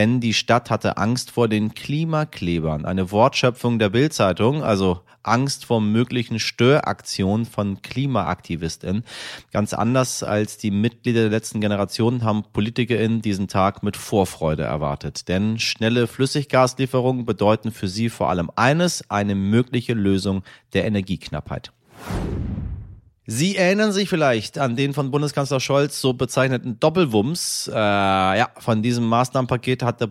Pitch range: 100-125 Hz